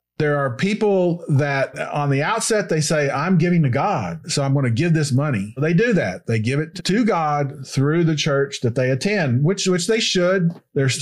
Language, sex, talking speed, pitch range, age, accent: English, male, 210 wpm, 135-170 Hz, 40-59, American